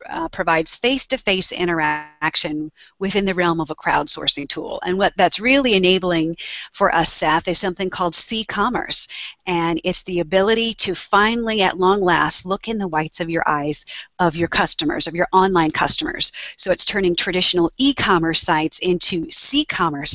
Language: English